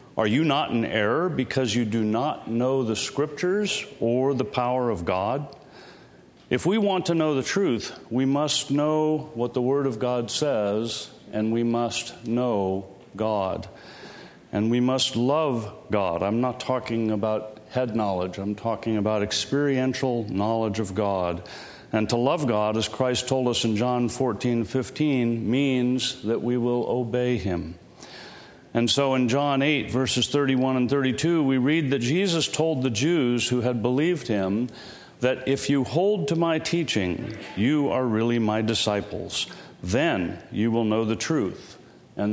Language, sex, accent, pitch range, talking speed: English, male, American, 110-130 Hz, 160 wpm